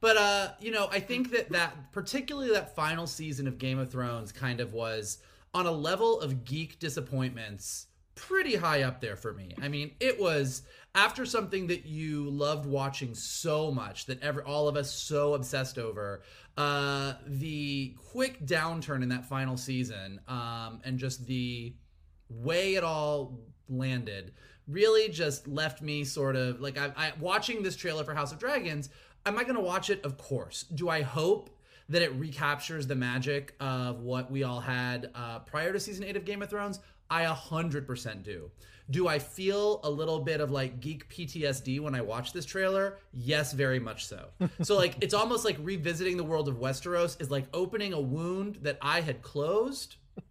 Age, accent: 30-49, American